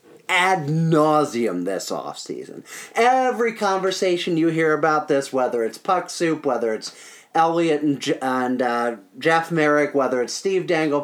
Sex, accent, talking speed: male, American, 140 wpm